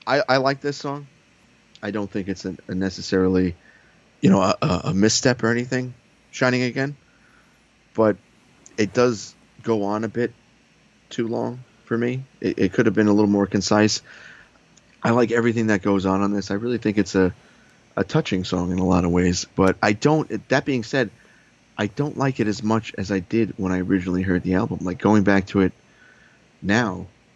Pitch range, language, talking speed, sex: 95-110 Hz, English, 195 wpm, male